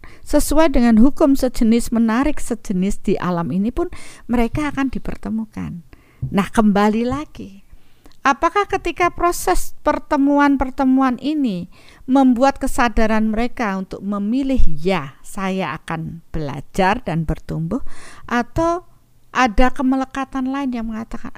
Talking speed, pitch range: 105 wpm, 190-265 Hz